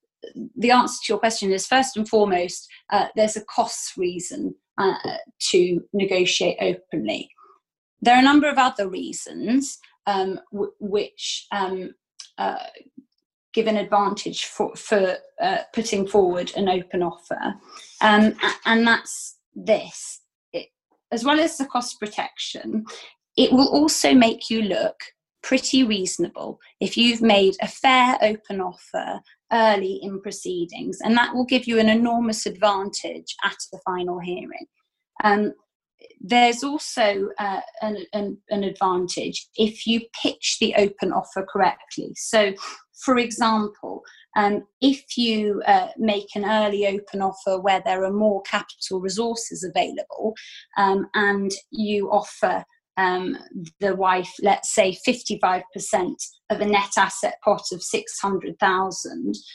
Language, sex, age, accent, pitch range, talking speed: English, female, 20-39, British, 195-245 Hz, 130 wpm